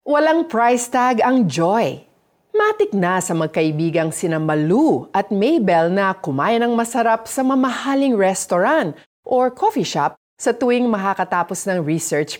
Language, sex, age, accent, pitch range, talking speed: Filipino, female, 40-59, native, 165-255 Hz, 135 wpm